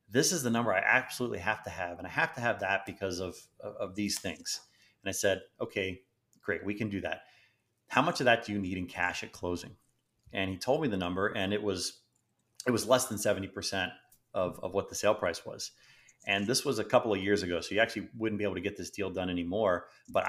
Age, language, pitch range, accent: 30-49, English, 95-115 Hz, American